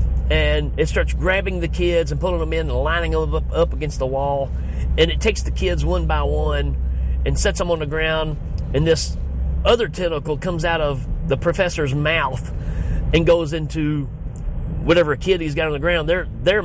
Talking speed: 195 wpm